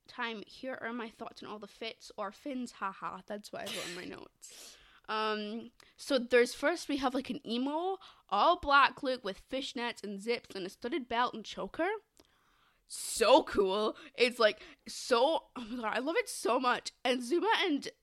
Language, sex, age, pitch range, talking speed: English, female, 20-39, 215-310 Hz, 180 wpm